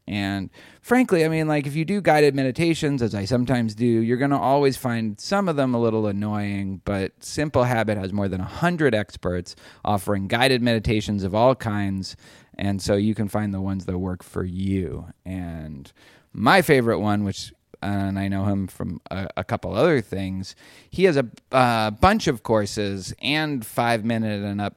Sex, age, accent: male, 30-49, American